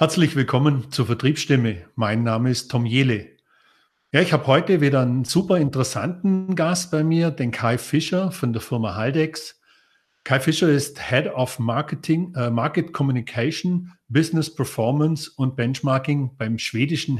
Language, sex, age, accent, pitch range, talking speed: German, male, 40-59, German, 120-160 Hz, 145 wpm